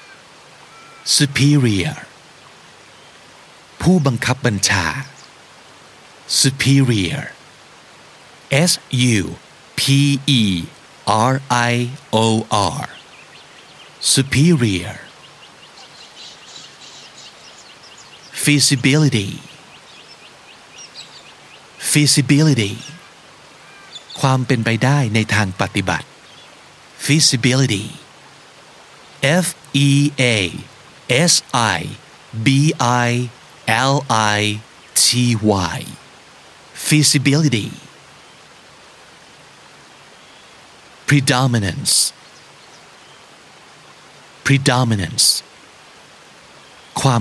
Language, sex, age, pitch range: Thai, male, 60-79, 110-140 Hz